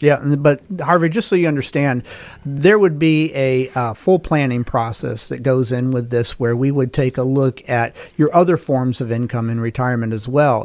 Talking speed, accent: 205 wpm, American